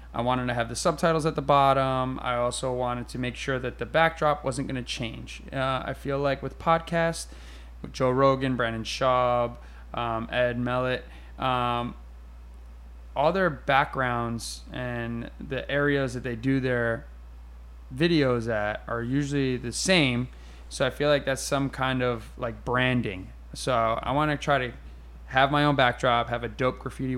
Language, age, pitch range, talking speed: English, 20-39, 110-135 Hz, 165 wpm